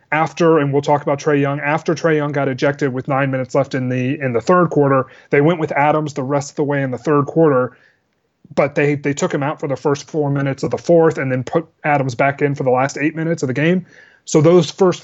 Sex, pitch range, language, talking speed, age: male, 135-155 Hz, English, 265 wpm, 30-49